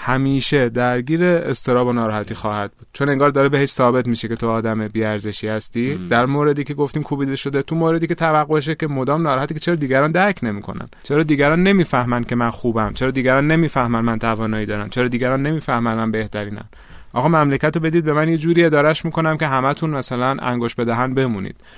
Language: Persian